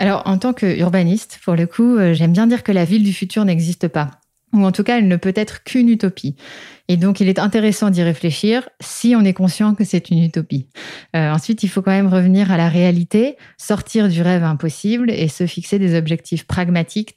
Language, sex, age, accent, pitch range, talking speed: French, female, 30-49, French, 160-195 Hz, 220 wpm